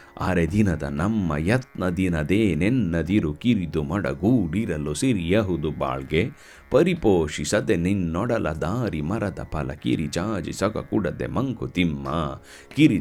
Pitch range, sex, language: 75-110 Hz, male, Kannada